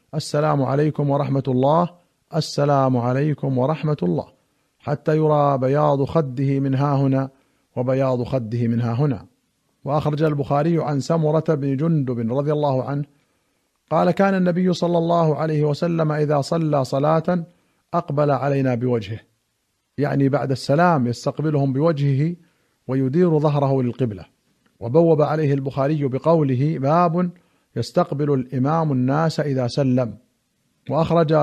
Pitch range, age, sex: 135-160 Hz, 50-69, male